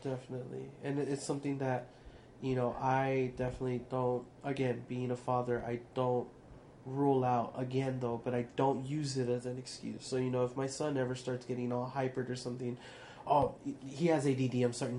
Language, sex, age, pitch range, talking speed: English, male, 20-39, 125-135 Hz, 190 wpm